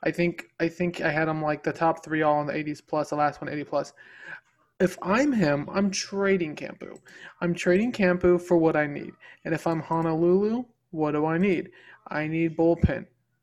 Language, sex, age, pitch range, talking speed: English, male, 20-39, 155-185 Hz, 200 wpm